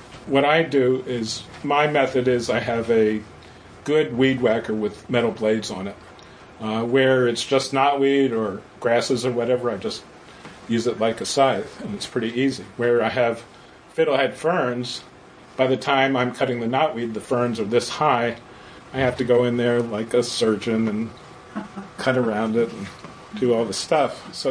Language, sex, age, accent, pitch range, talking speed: English, male, 40-59, American, 115-135 Hz, 180 wpm